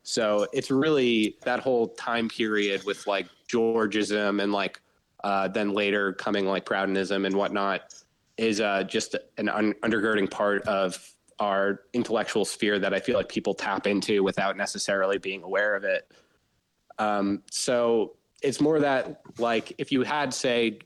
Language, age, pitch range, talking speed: English, 20-39, 100-115 Hz, 155 wpm